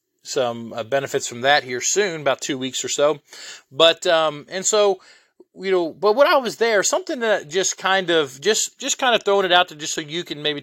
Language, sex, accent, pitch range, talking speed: English, male, American, 125-165 Hz, 230 wpm